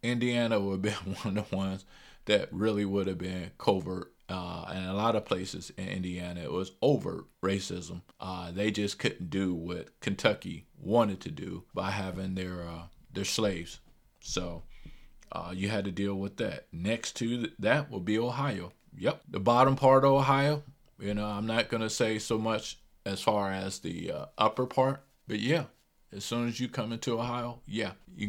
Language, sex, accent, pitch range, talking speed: English, male, American, 95-120 Hz, 190 wpm